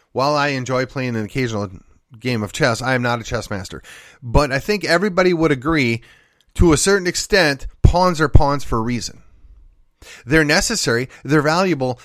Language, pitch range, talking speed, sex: English, 120-165 Hz, 175 wpm, male